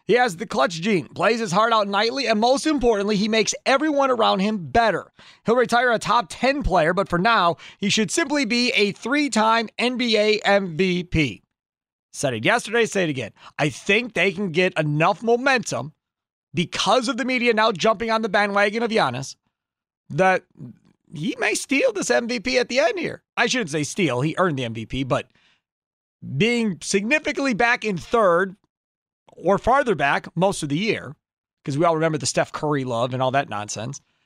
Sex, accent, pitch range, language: male, American, 165-235 Hz, English